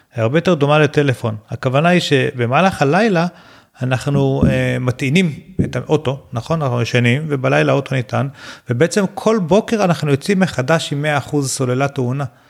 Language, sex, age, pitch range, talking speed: Hebrew, male, 40-59, 125-165 Hz, 140 wpm